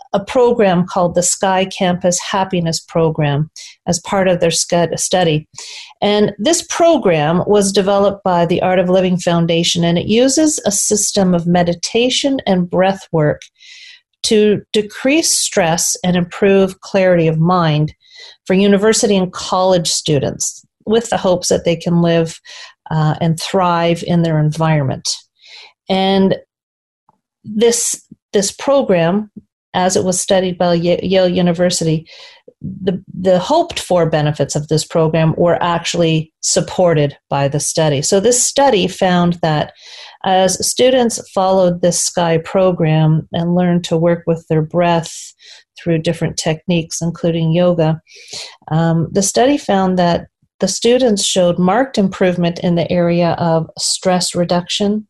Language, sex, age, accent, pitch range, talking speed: English, female, 40-59, American, 170-205 Hz, 135 wpm